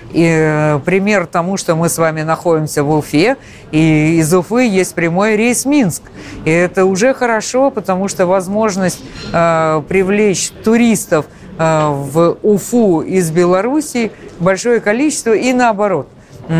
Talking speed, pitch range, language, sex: 125 wpm, 165-200 Hz, Russian, female